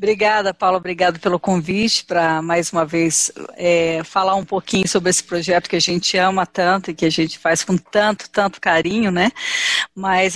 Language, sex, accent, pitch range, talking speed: Portuguese, female, Brazilian, 180-210 Hz, 185 wpm